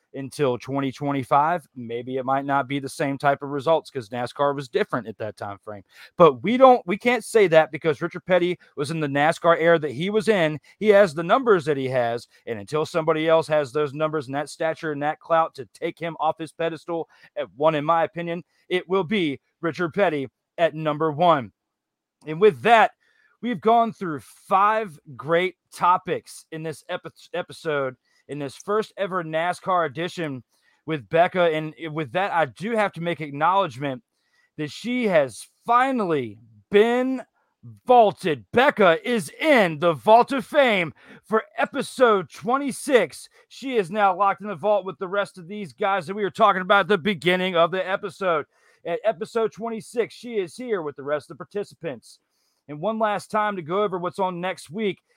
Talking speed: 185 wpm